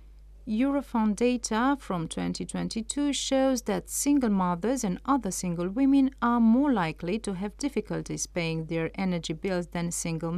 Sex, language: female, English